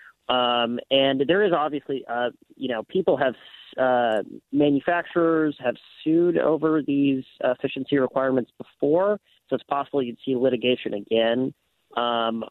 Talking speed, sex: 130 wpm, male